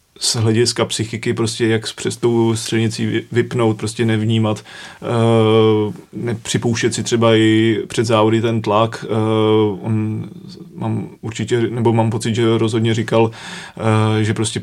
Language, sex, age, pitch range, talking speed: Czech, male, 30-49, 110-115 Hz, 130 wpm